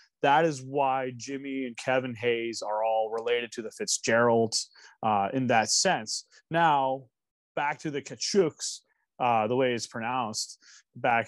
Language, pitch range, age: English, 125-165 Hz, 30-49